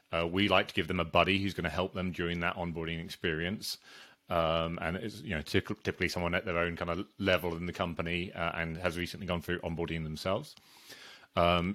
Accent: British